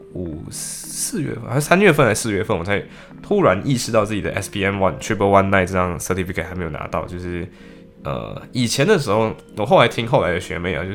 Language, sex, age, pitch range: Chinese, male, 20-39, 85-100 Hz